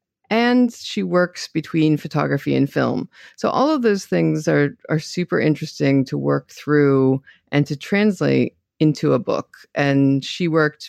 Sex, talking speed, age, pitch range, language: female, 155 wpm, 40-59, 140-185 Hz, English